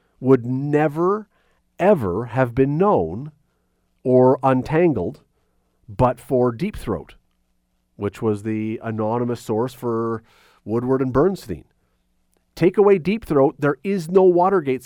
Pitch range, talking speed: 110-160 Hz, 115 wpm